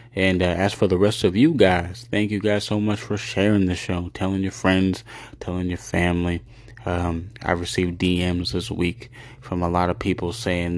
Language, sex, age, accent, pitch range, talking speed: English, male, 20-39, American, 90-115 Hz, 200 wpm